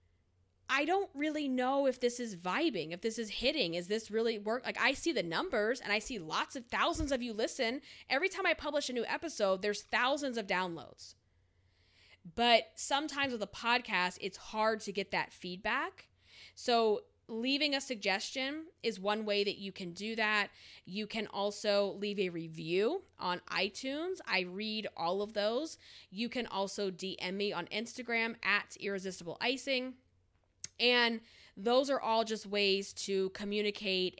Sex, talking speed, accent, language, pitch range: female, 165 wpm, American, English, 185-240 Hz